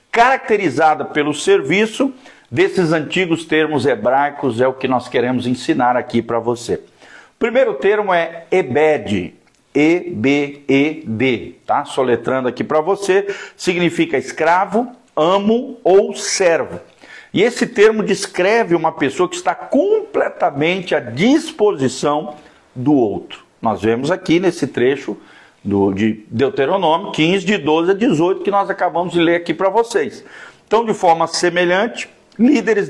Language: Portuguese